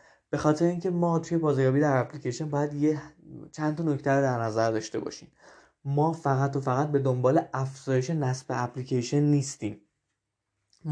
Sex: male